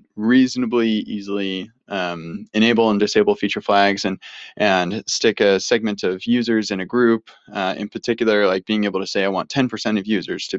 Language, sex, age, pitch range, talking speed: English, male, 20-39, 100-120 Hz, 185 wpm